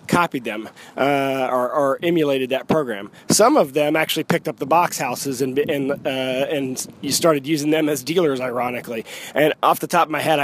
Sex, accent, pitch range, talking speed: male, American, 135-160 Hz, 200 wpm